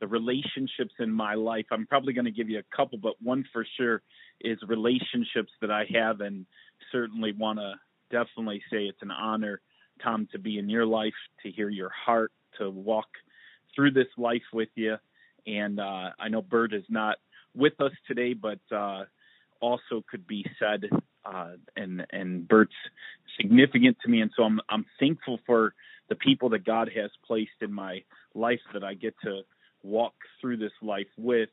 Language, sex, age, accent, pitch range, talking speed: English, male, 30-49, American, 105-125 Hz, 180 wpm